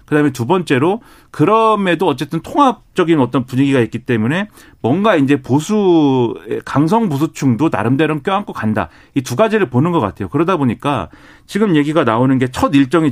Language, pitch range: Korean, 120-160 Hz